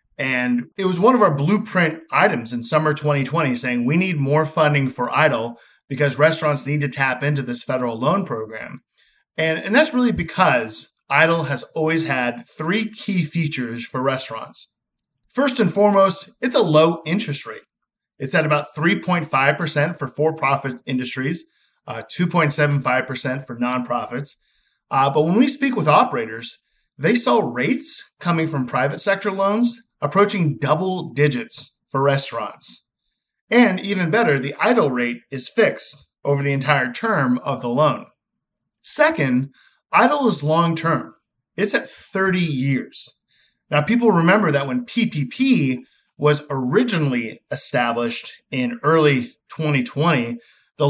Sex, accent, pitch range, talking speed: male, American, 135-180 Hz, 140 wpm